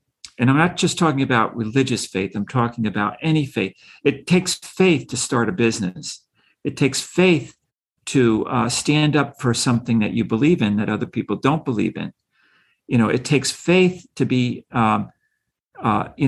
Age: 50-69